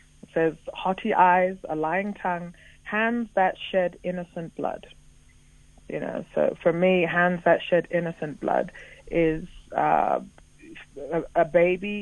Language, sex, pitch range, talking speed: English, female, 160-185 Hz, 125 wpm